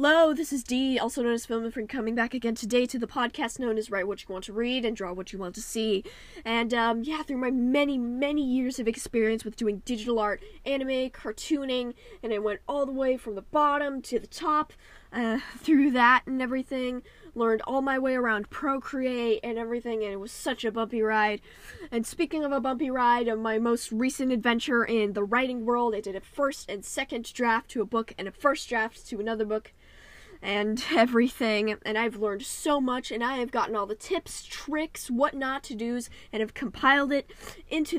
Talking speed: 215 wpm